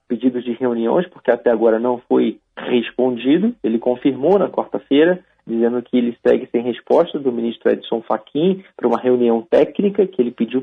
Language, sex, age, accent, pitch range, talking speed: Portuguese, male, 40-59, Brazilian, 120-155 Hz, 170 wpm